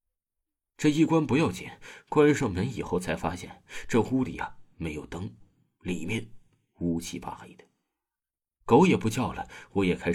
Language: Chinese